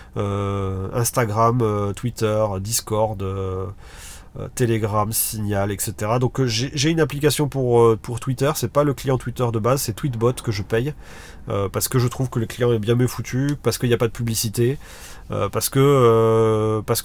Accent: French